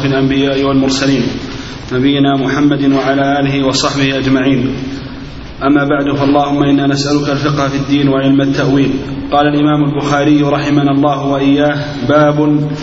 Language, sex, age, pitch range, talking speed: Arabic, male, 30-49, 140-150 Hz, 115 wpm